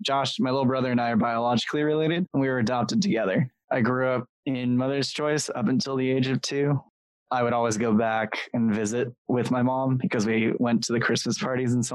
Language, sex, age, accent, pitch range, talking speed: English, male, 20-39, American, 120-135 Hz, 225 wpm